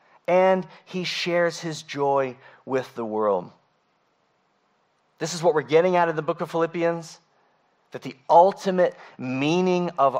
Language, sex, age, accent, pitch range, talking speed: English, male, 40-59, American, 155-195 Hz, 140 wpm